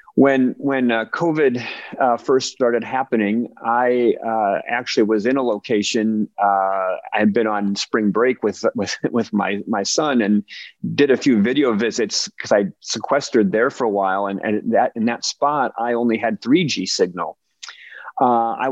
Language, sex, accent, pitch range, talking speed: English, male, American, 105-130 Hz, 175 wpm